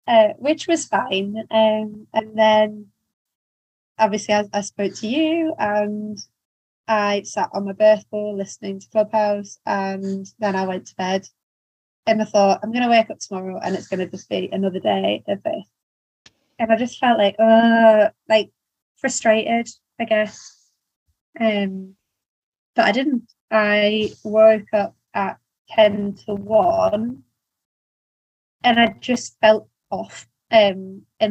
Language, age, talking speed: English, 20-39, 140 wpm